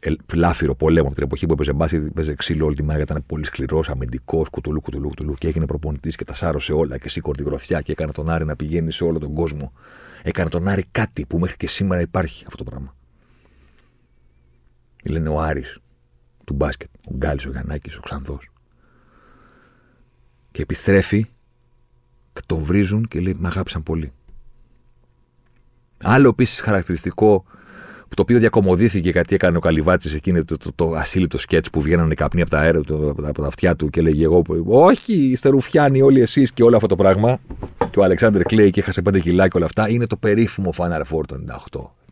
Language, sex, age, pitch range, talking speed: Greek, male, 50-69, 70-95 Hz, 185 wpm